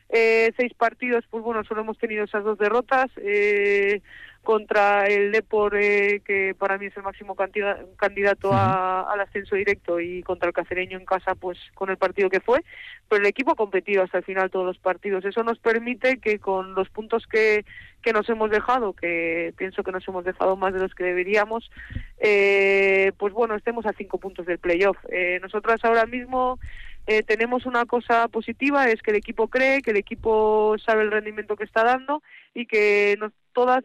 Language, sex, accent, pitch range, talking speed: Spanish, female, Spanish, 195-235 Hz, 190 wpm